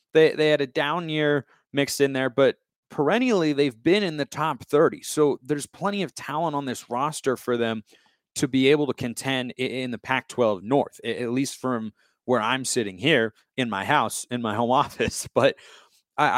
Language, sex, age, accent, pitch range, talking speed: English, male, 30-49, American, 115-135 Hz, 190 wpm